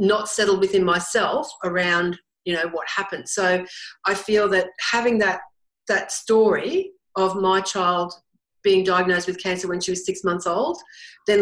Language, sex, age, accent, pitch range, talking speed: English, female, 40-59, Australian, 185-215 Hz, 165 wpm